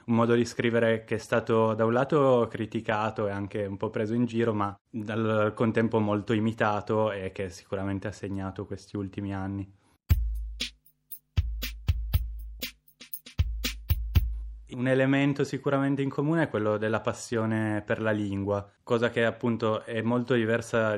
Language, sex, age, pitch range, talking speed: Italian, male, 20-39, 105-120 Hz, 140 wpm